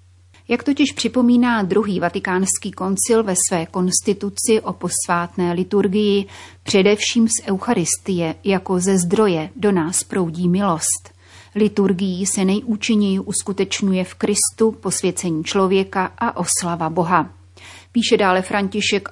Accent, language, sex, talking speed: native, Czech, female, 115 wpm